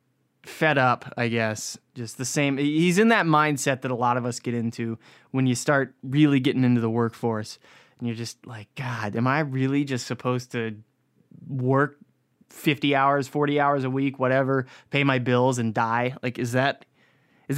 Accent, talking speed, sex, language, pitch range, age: American, 185 wpm, male, English, 125-155 Hz, 20-39